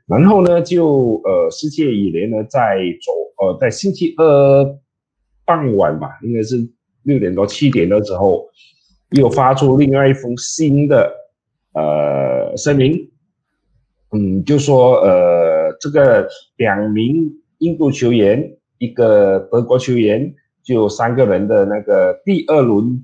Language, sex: Chinese, male